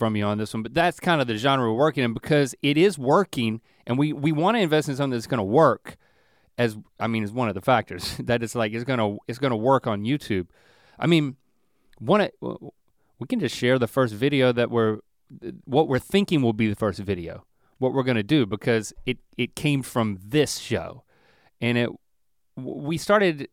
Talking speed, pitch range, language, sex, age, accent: 220 wpm, 110-140 Hz, English, male, 30-49, American